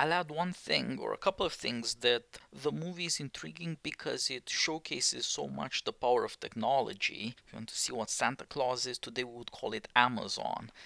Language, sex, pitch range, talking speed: English, male, 120-170 Hz, 210 wpm